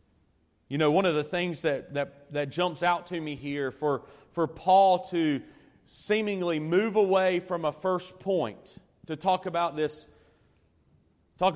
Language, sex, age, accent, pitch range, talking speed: English, male, 40-59, American, 145-185 Hz, 155 wpm